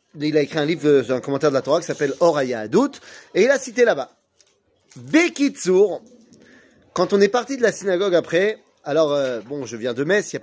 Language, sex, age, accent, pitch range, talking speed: French, male, 30-49, French, 140-195 Hz, 220 wpm